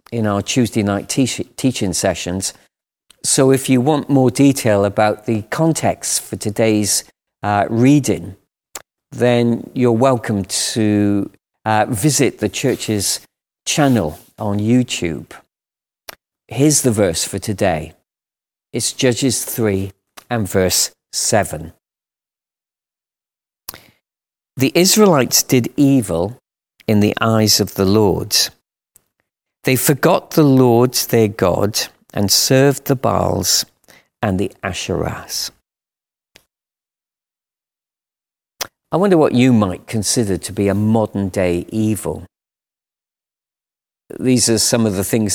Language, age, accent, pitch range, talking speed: English, 40-59, British, 100-130 Hz, 105 wpm